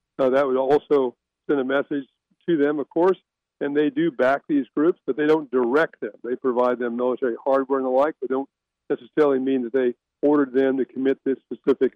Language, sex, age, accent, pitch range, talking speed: English, male, 50-69, American, 125-145 Hz, 210 wpm